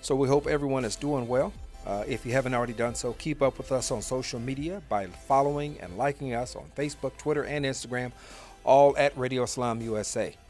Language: English